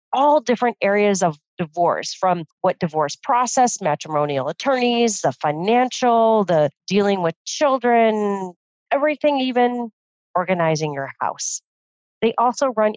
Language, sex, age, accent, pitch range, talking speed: English, female, 40-59, American, 165-245 Hz, 115 wpm